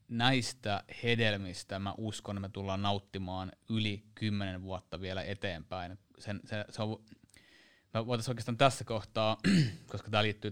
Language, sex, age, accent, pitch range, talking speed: Finnish, male, 30-49, native, 100-115 Hz, 135 wpm